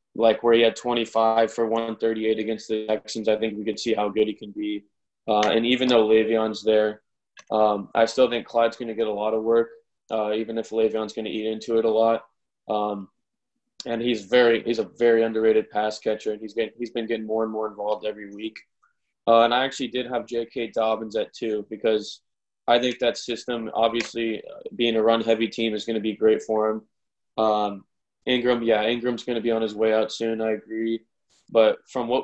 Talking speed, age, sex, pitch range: 215 wpm, 20-39, male, 110-115 Hz